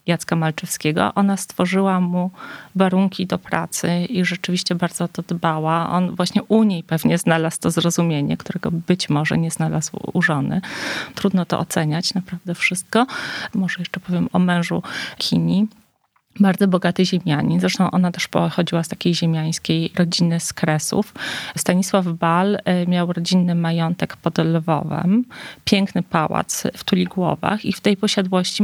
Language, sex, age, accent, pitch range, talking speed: Polish, female, 30-49, native, 165-190 Hz, 140 wpm